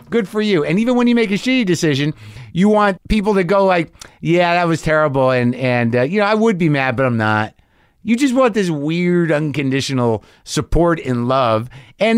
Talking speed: 210 wpm